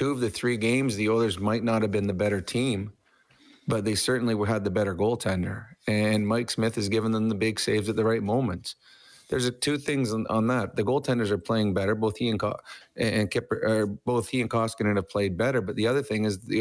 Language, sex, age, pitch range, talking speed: English, male, 30-49, 105-115 Hz, 215 wpm